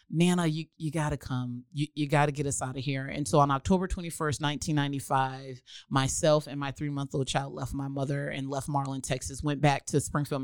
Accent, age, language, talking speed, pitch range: American, 30-49, English, 200 wpm, 140-165 Hz